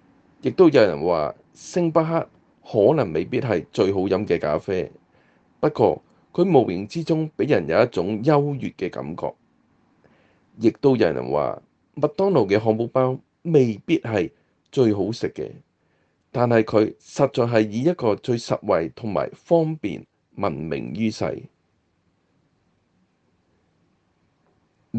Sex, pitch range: male, 105-140 Hz